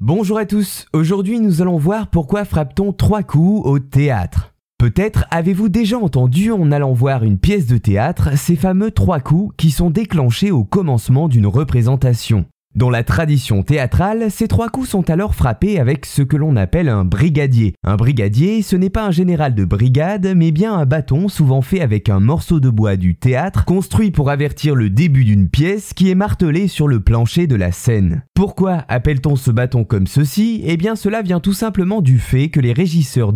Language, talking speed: French, 190 wpm